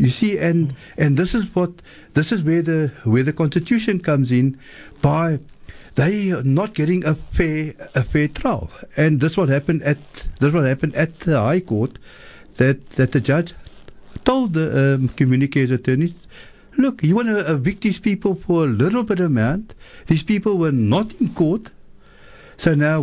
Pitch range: 135-185 Hz